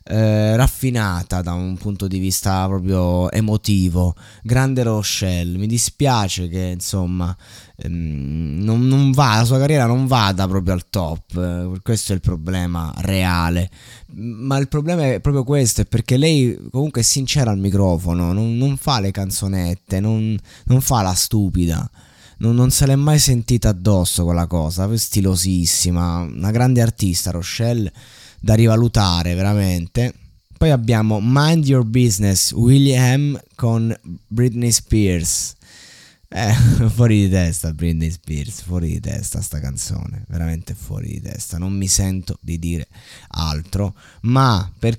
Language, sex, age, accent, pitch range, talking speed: Italian, male, 20-39, native, 90-115 Hz, 140 wpm